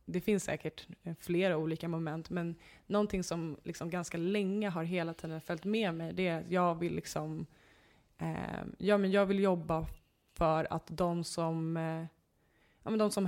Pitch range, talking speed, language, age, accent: 160-190 Hz, 175 wpm, Swedish, 20-39, native